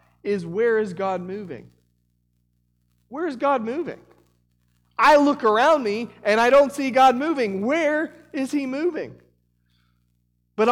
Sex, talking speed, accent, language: male, 135 wpm, American, English